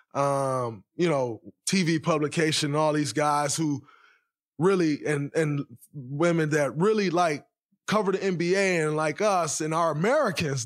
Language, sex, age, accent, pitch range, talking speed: English, male, 20-39, American, 155-205 Hz, 140 wpm